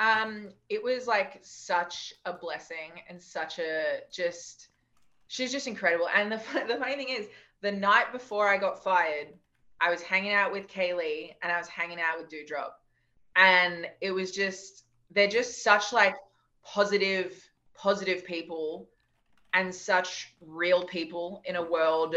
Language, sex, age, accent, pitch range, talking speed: English, female, 20-39, Australian, 170-210 Hz, 155 wpm